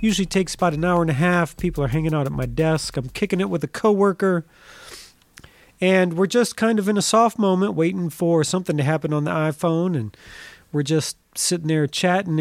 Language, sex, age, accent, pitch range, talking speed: English, male, 40-59, American, 155-200 Hz, 215 wpm